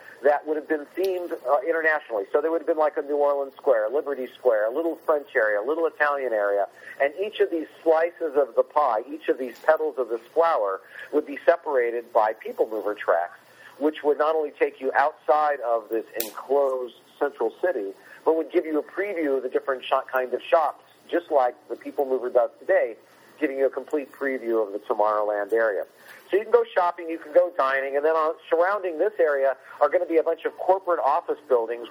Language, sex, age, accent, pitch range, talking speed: English, male, 50-69, American, 135-195 Hz, 215 wpm